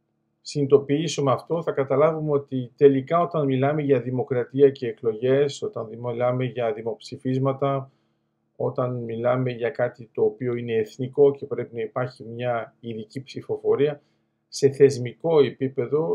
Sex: male